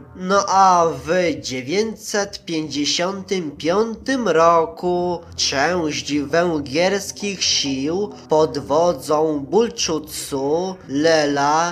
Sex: male